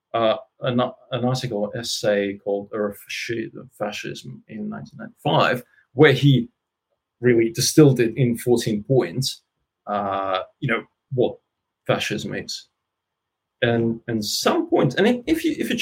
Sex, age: male, 30-49